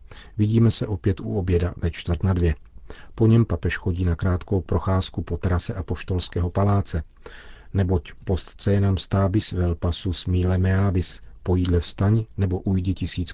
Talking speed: 155 wpm